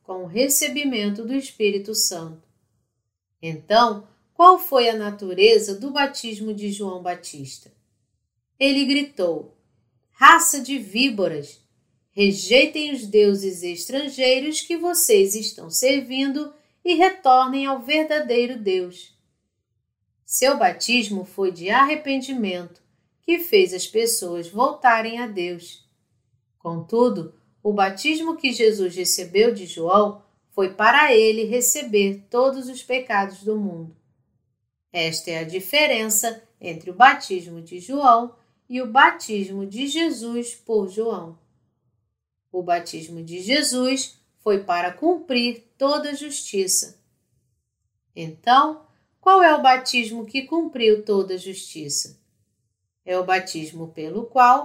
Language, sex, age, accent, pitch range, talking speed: Portuguese, female, 40-59, Brazilian, 175-265 Hz, 115 wpm